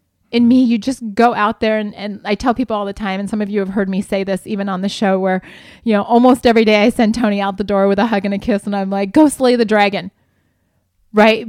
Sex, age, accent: female, 20-39, American